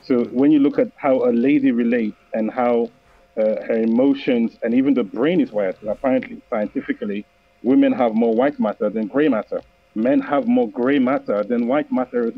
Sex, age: male, 40-59